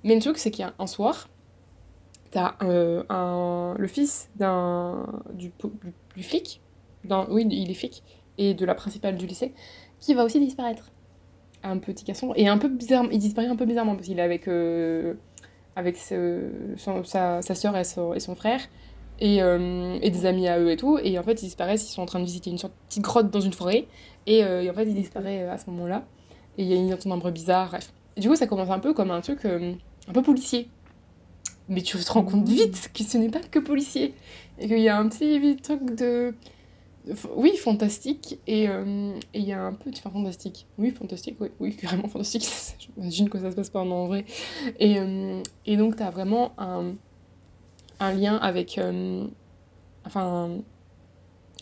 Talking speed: 210 wpm